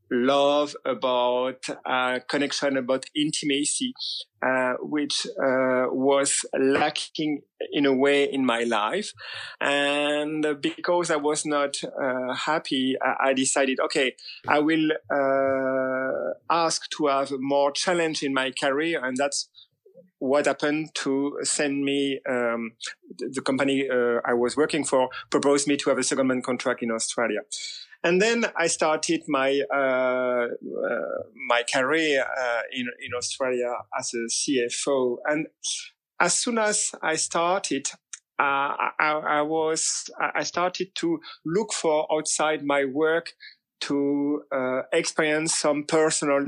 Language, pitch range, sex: English, 130-155 Hz, male